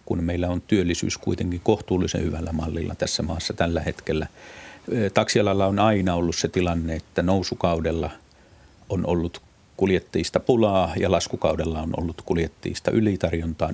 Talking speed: 130 wpm